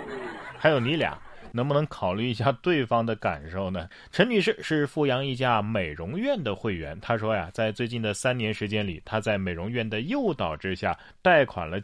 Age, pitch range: 30-49, 110-170 Hz